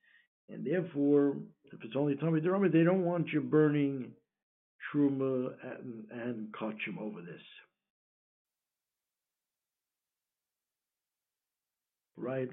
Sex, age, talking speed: male, 60-79, 85 wpm